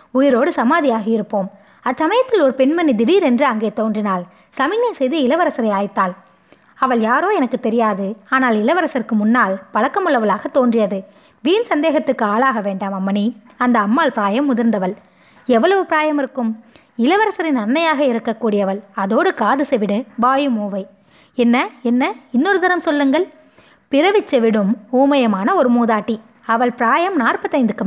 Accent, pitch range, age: native, 215-285 Hz, 20-39